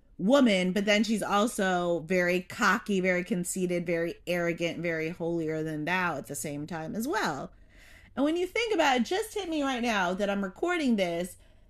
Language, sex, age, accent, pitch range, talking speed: English, female, 30-49, American, 180-275 Hz, 185 wpm